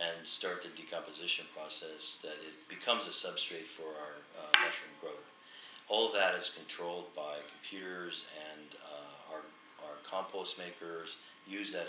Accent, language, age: American, English, 40-59